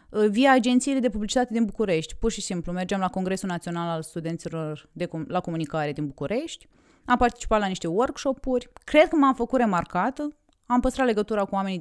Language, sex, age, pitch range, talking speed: Romanian, female, 30-49, 185-255 Hz, 190 wpm